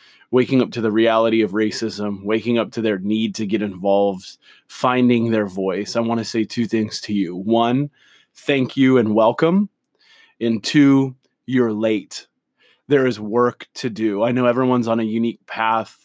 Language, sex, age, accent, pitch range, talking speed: English, male, 20-39, American, 110-120 Hz, 175 wpm